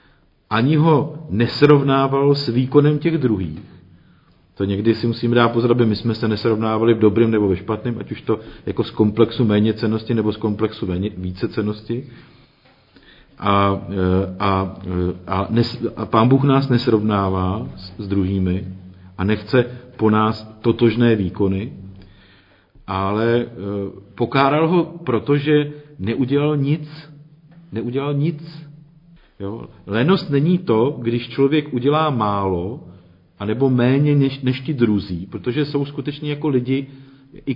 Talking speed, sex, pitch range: 125 wpm, male, 100-135 Hz